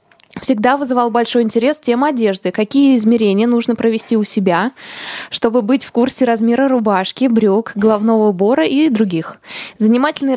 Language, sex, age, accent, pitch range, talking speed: Russian, female, 20-39, native, 205-265 Hz, 140 wpm